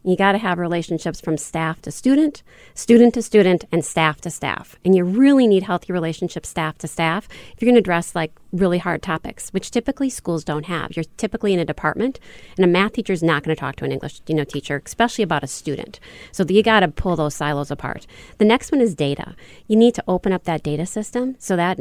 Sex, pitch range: female, 165-215 Hz